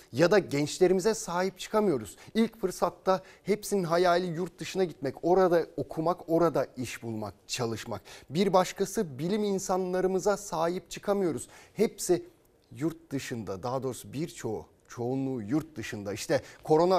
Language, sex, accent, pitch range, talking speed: Turkish, male, native, 120-185 Hz, 125 wpm